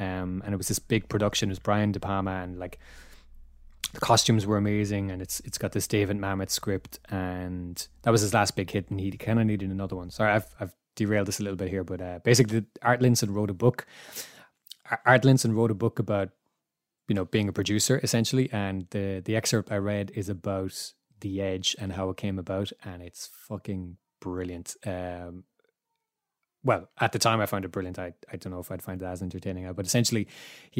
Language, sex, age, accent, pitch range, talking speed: English, male, 20-39, Irish, 95-110 Hz, 215 wpm